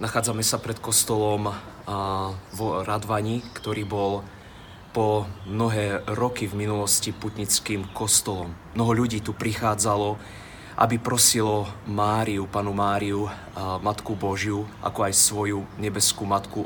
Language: Slovak